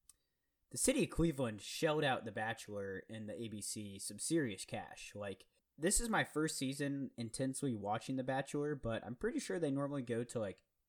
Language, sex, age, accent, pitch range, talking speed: English, male, 20-39, American, 115-155 Hz, 180 wpm